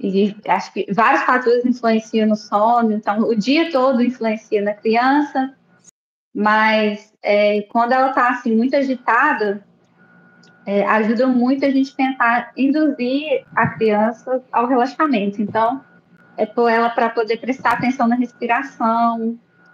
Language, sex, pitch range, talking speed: Portuguese, female, 205-245 Hz, 135 wpm